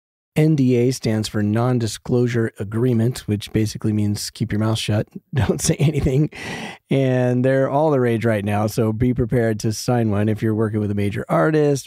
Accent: American